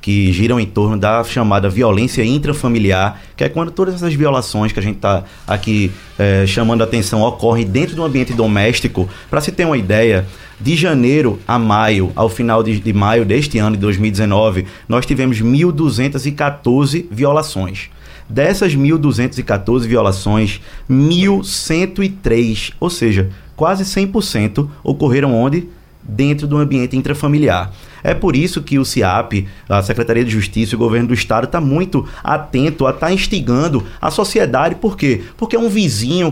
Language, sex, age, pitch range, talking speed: Portuguese, male, 20-39, 110-155 Hz, 160 wpm